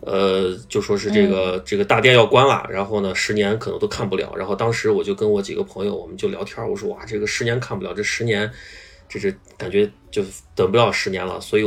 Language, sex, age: Chinese, male, 20-39